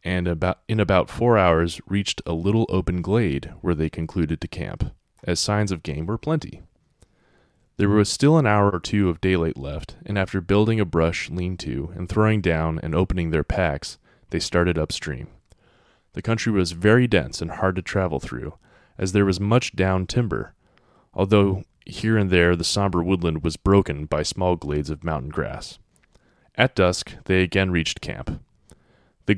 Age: 20-39